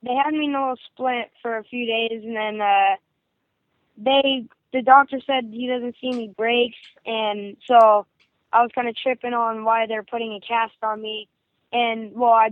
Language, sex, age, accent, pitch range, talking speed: English, female, 10-29, American, 215-240 Hz, 200 wpm